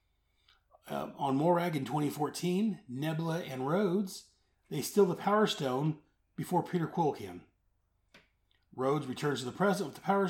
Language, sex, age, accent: English, male, 30-49, American